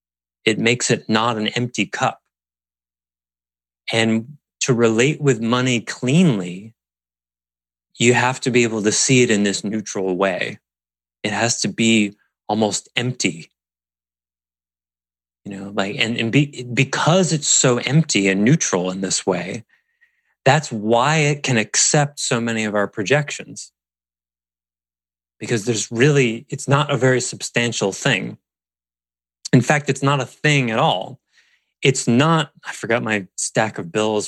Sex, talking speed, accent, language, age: male, 140 wpm, American, English, 30-49